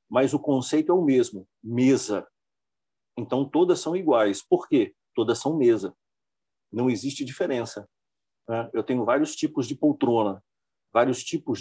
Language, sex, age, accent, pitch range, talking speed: Portuguese, male, 50-69, Brazilian, 110-170 Hz, 145 wpm